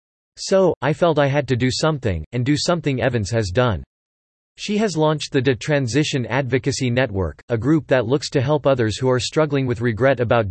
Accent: American